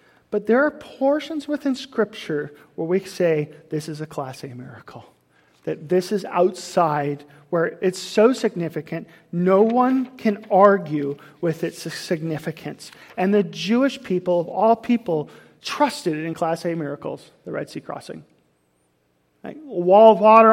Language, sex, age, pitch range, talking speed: English, male, 40-59, 155-205 Hz, 145 wpm